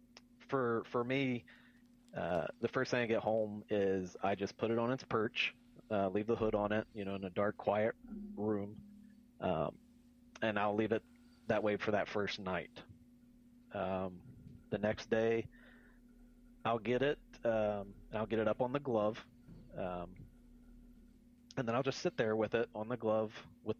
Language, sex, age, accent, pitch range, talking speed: English, male, 30-49, American, 105-145 Hz, 175 wpm